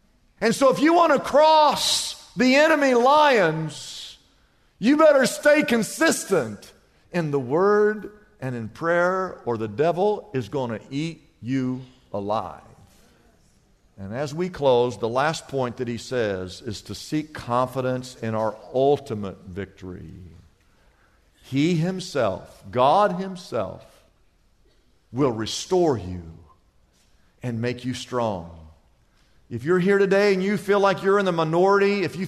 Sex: male